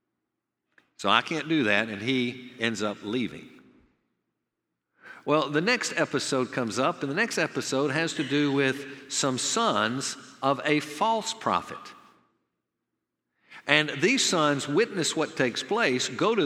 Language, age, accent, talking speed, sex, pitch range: English, 50-69, American, 140 wpm, male, 125-165 Hz